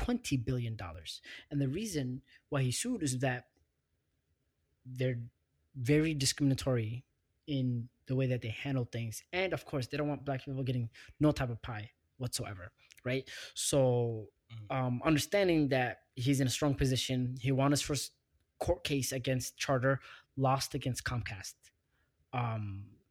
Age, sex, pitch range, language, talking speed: 20-39, male, 120-140 Hz, English, 150 wpm